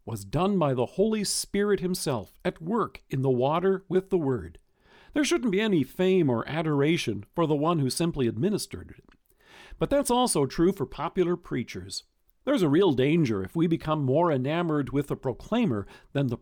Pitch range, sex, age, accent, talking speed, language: 130-190 Hz, male, 50-69, American, 185 wpm, English